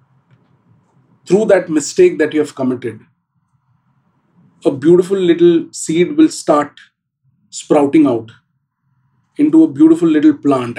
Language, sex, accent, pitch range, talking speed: English, male, Indian, 130-165 Hz, 110 wpm